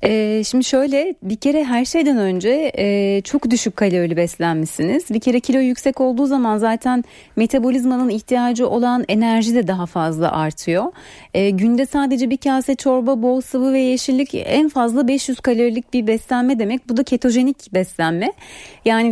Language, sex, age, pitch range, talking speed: Turkish, female, 30-49, 215-265 Hz, 155 wpm